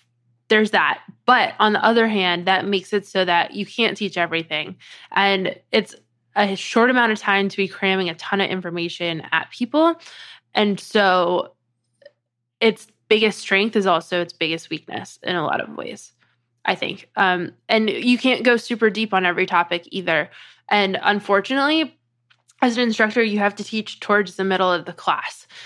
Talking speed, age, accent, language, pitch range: 175 wpm, 20-39, American, English, 165-210 Hz